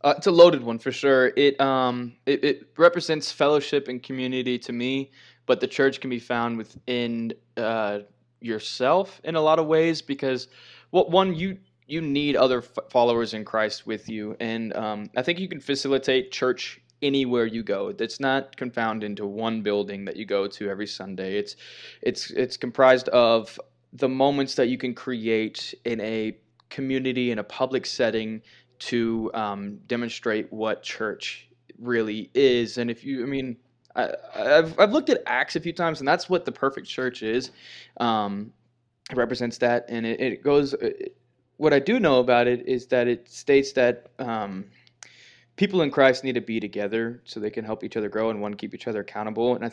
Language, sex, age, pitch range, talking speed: English, male, 20-39, 115-135 Hz, 185 wpm